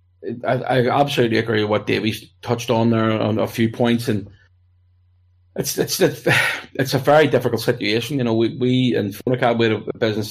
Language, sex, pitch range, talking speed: English, male, 105-125 Hz, 185 wpm